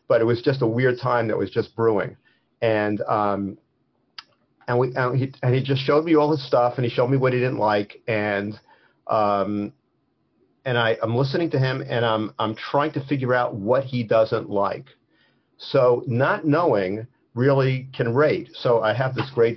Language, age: English, 50-69